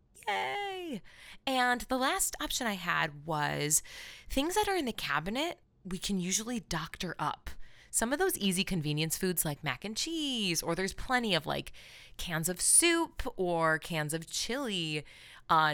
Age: 20-39